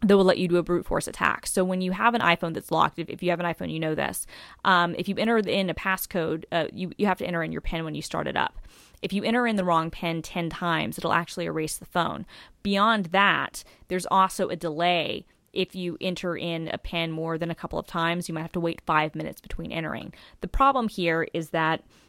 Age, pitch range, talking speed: 20-39, 155-180 Hz, 250 wpm